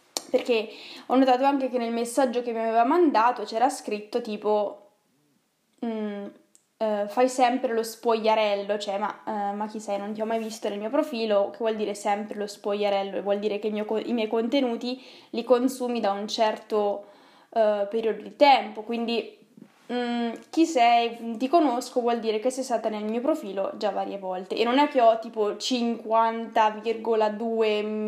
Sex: female